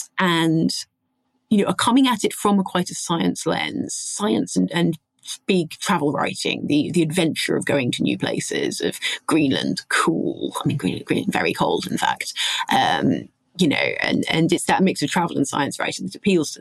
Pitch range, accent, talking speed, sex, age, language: 165-195 Hz, British, 195 wpm, female, 30-49, English